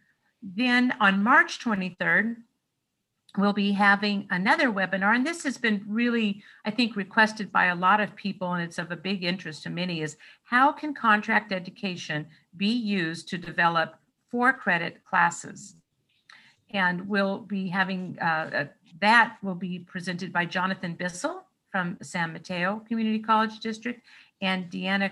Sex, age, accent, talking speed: female, 50-69, American, 145 wpm